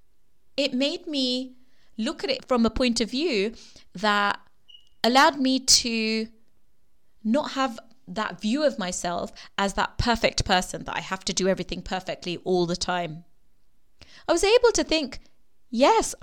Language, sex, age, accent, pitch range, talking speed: English, female, 20-39, British, 195-270 Hz, 150 wpm